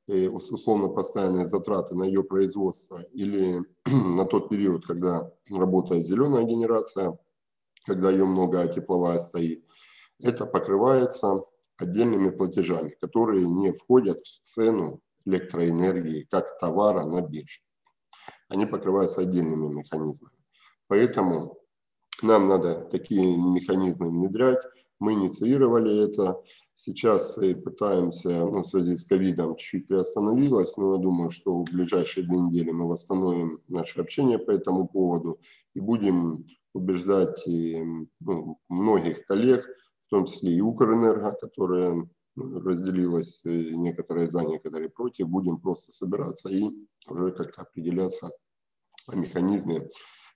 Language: Ukrainian